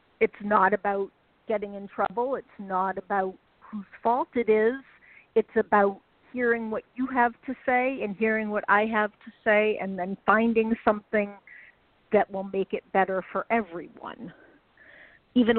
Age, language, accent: 50-69, English, American